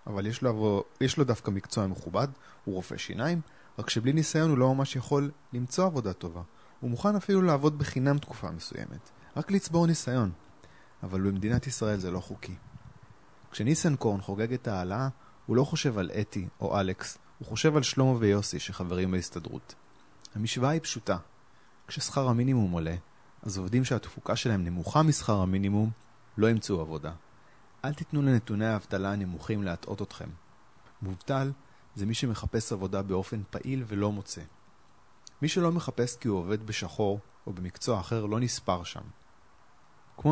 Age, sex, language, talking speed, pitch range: 30-49, male, Hebrew, 150 wpm, 95-130 Hz